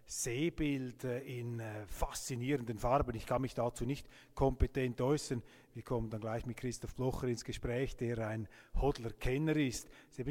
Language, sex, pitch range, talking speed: German, male, 115-140 Hz, 170 wpm